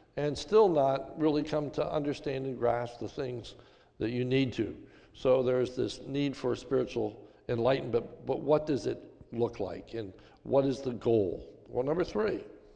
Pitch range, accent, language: 130-170 Hz, American, English